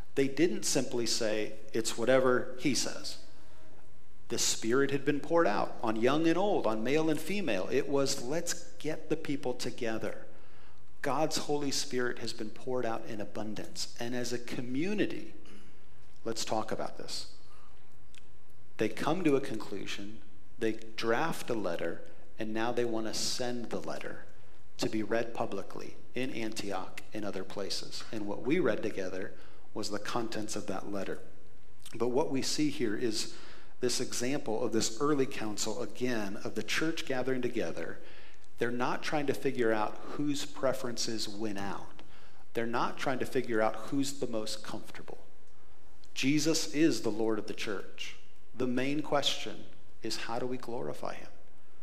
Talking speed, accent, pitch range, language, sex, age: 160 wpm, American, 110-140 Hz, English, male, 40-59